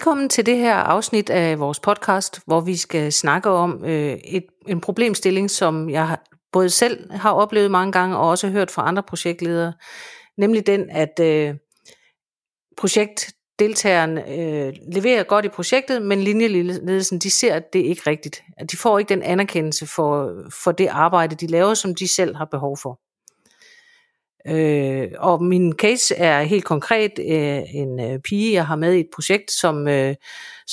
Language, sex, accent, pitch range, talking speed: Danish, female, native, 165-210 Hz, 170 wpm